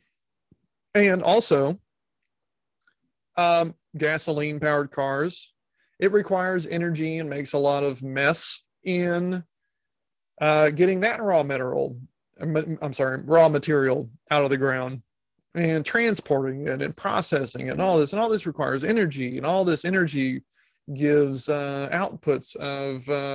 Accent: American